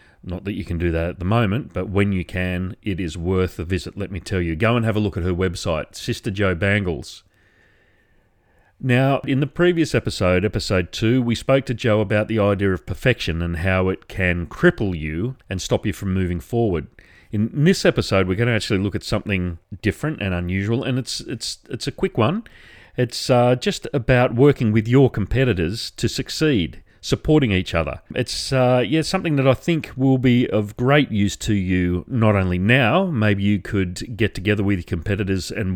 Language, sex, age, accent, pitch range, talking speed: English, male, 40-59, Australian, 90-120 Hz, 200 wpm